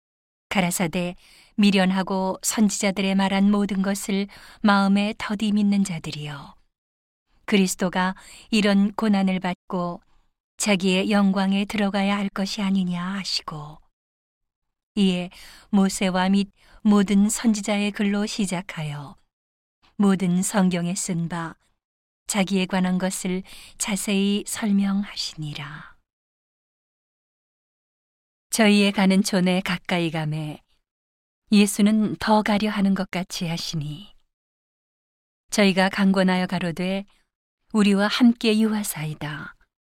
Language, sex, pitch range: Korean, female, 175-205 Hz